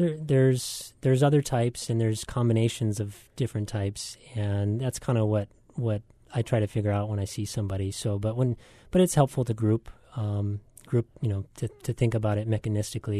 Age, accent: 30-49, American